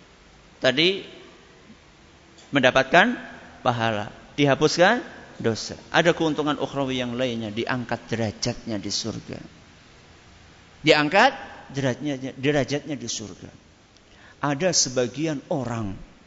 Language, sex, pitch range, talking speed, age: Malay, male, 120-180 Hz, 80 wpm, 50-69